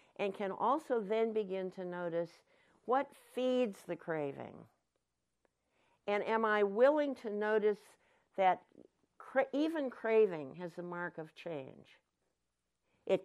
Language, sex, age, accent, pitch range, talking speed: English, female, 60-79, American, 150-210 Hz, 120 wpm